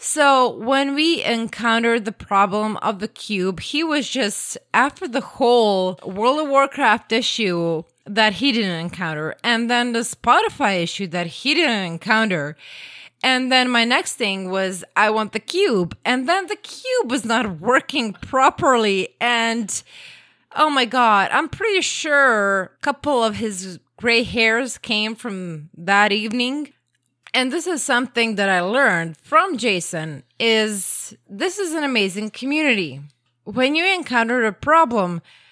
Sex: female